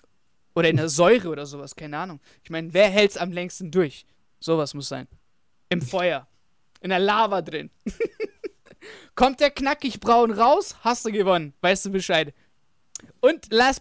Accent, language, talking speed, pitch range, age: German, German, 165 wpm, 170-240 Hz, 20-39